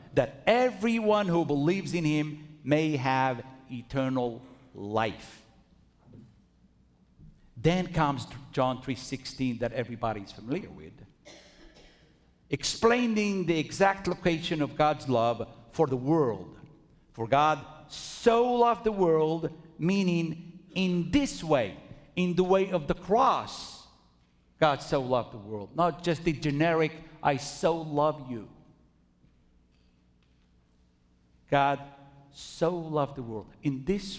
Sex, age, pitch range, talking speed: male, 50-69, 125-175 Hz, 115 wpm